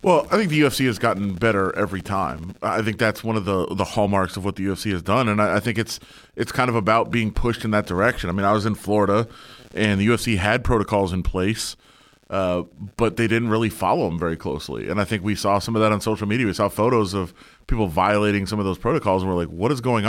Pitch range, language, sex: 95-110 Hz, English, male